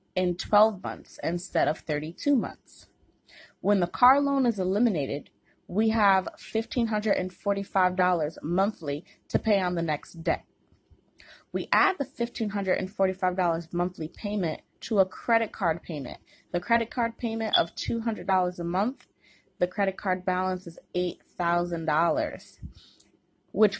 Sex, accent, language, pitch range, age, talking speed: female, American, English, 165-210 Hz, 20-39, 155 wpm